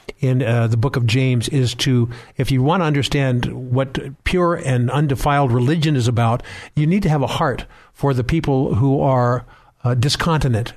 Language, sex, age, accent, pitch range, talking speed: English, male, 50-69, American, 125-145 Hz, 185 wpm